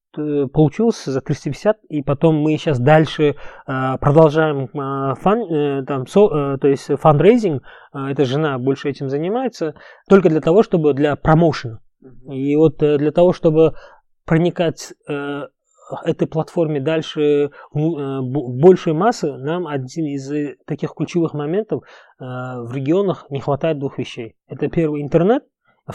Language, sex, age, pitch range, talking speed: Russian, male, 20-39, 135-160 Hz, 120 wpm